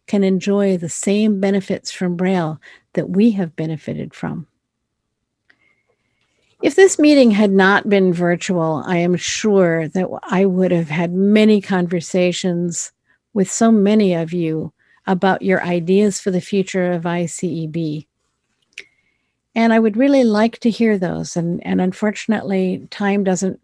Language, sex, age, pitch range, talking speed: English, female, 50-69, 170-210 Hz, 140 wpm